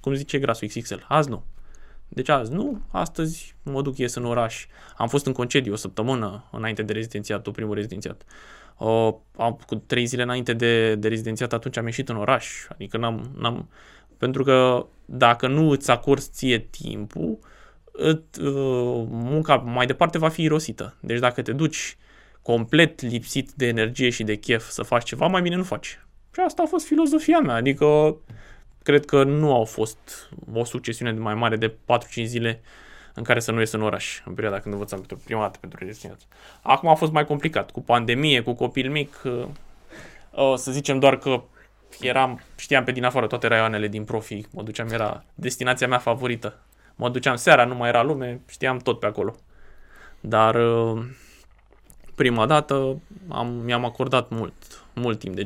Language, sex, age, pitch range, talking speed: Romanian, male, 20-39, 115-140 Hz, 175 wpm